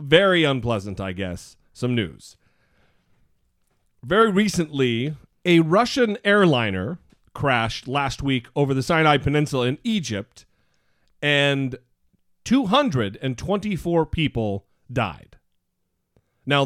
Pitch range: 120-170 Hz